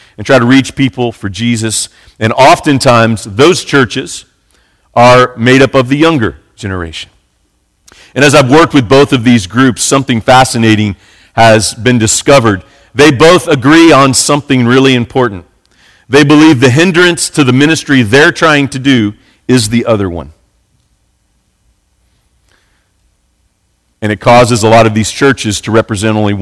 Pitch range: 110-140 Hz